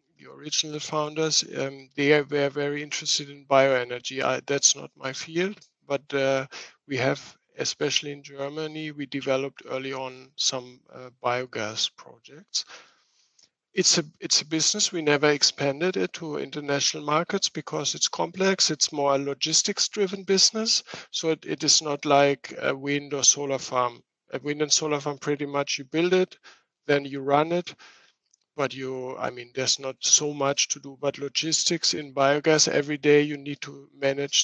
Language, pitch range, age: English, 135-155 Hz, 50-69